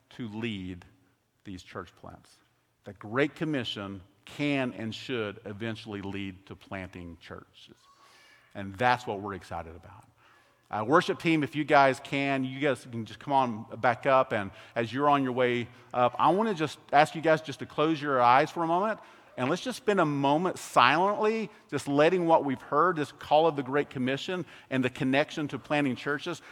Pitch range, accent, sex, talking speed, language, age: 115-150 Hz, American, male, 190 wpm, English, 50-69